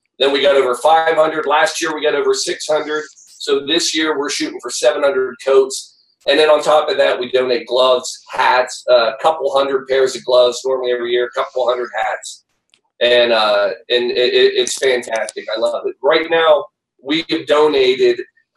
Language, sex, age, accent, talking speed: English, male, 40-59, American, 185 wpm